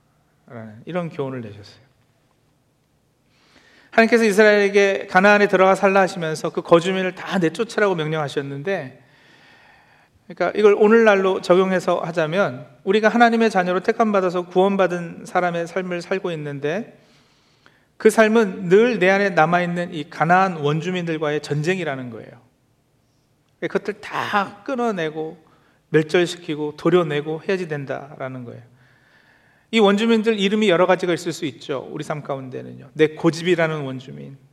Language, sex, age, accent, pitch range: Korean, male, 40-59, native, 140-195 Hz